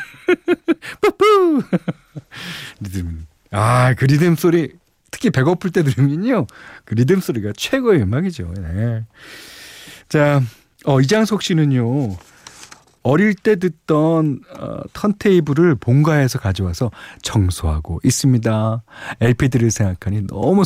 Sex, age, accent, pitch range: male, 40-59, native, 105-165 Hz